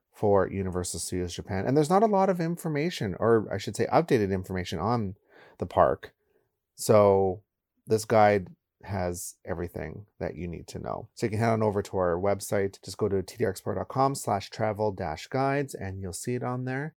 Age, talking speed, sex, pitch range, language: 30-49, 175 wpm, male, 95-125 Hz, English